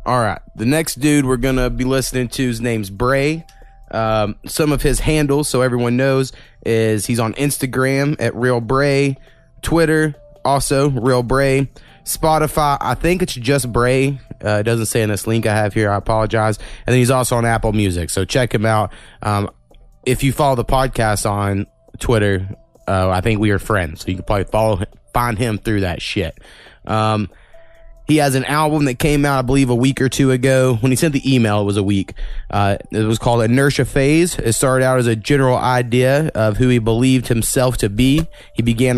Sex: male